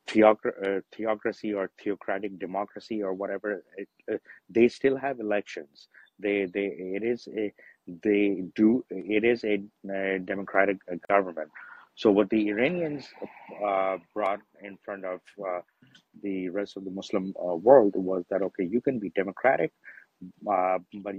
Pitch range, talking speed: 95-105 Hz, 145 wpm